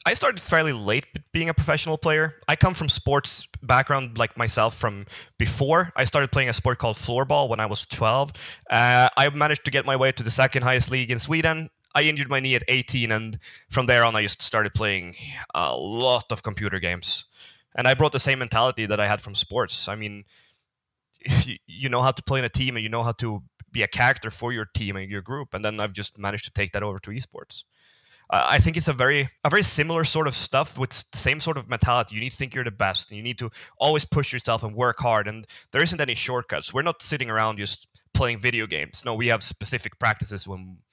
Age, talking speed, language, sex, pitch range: 20-39, 235 wpm, English, male, 110-135 Hz